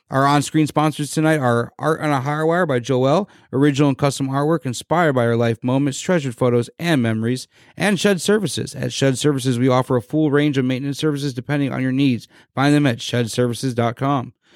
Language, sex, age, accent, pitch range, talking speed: English, male, 30-49, American, 125-150 Hz, 195 wpm